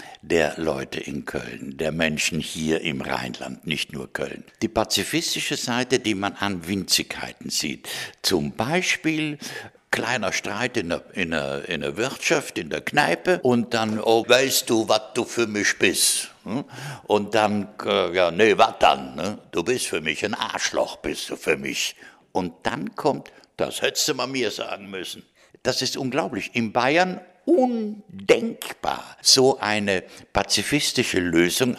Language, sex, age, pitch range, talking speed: German, male, 60-79, 95-125 Hz, 150 wpm